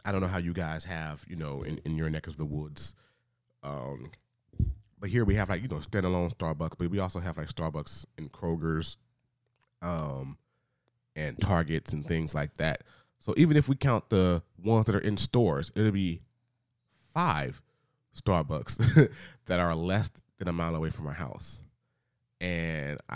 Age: 30-49